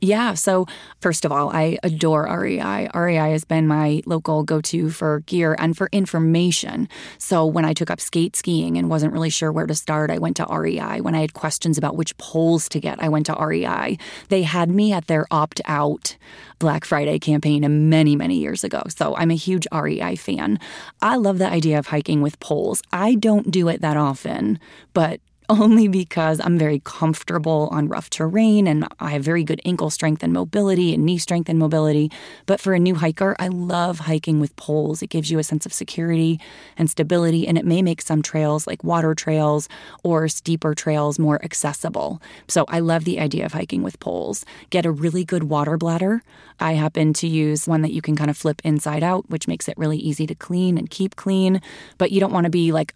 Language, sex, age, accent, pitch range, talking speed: English, female, 20-39, American, 155-175 Hz, 210 wpm